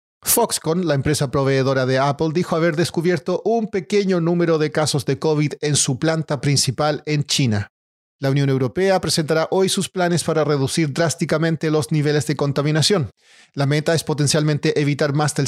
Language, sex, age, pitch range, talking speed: Spanish, male, 40-59, 145-170 Hz, 165 wpm